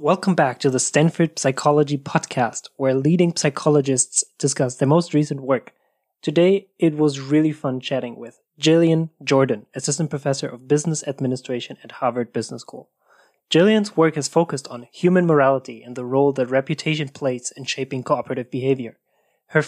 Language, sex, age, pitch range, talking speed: English, male, 20-39, 135-165 Hz, 155 wpm